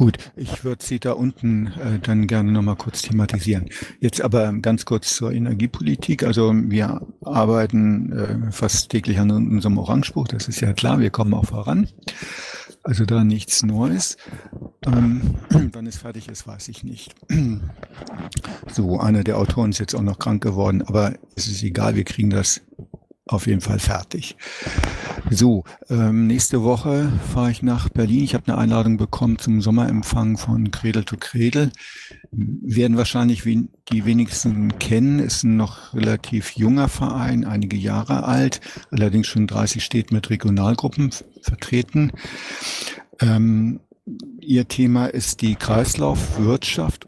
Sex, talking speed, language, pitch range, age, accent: male, 145 wpm, German, 105-120 Hz, 60-79, German